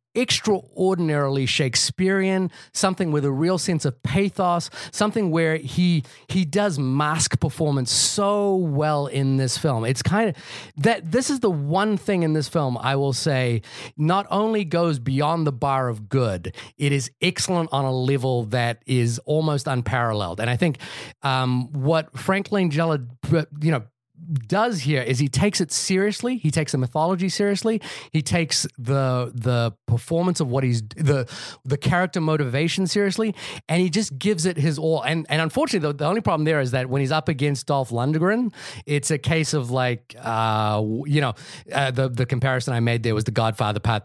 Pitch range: 130-170 Hz